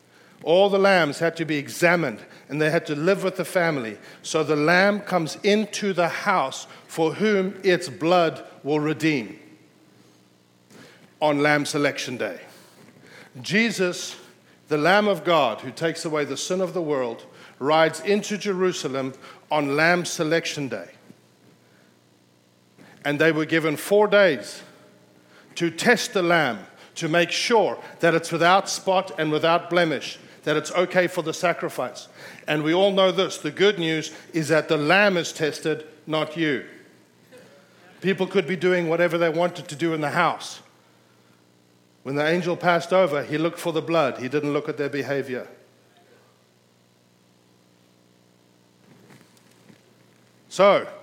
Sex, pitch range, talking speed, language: male, 135-180 Hz, 145 wpm, English